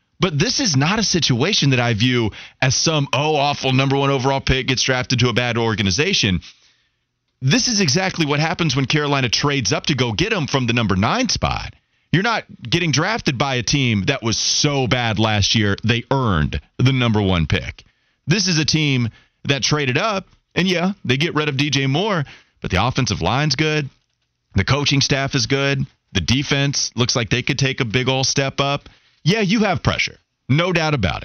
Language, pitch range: English, 110-150 Hz